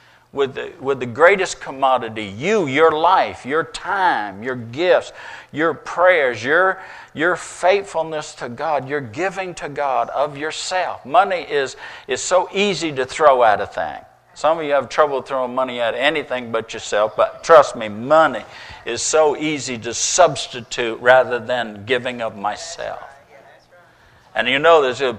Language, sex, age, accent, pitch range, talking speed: English, male, 50-69, American, 120-155 Hz, 155 wpm